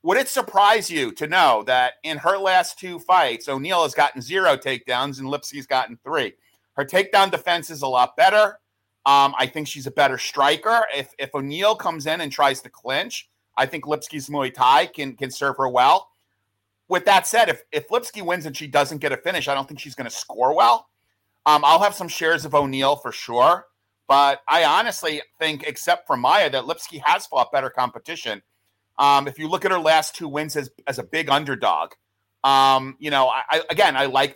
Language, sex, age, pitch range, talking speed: English, male, 40-59, 135-170 Hz, 210 wpm